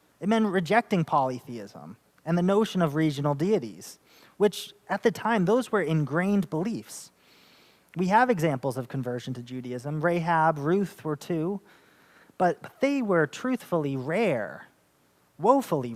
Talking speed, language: 130 wpm, English